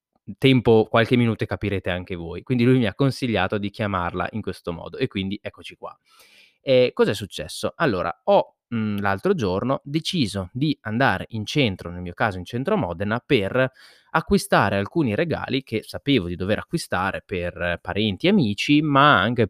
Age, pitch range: 20-39, 100-135 Hz